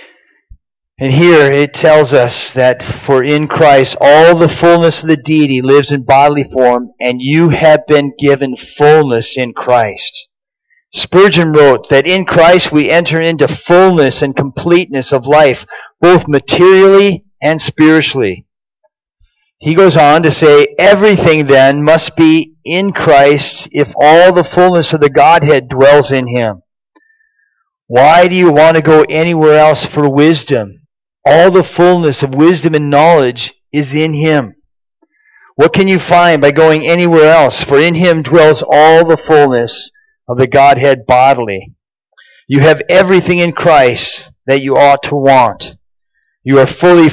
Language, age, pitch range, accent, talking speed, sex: English, 50-69, 140-170 Hz, American, 150 wpm, male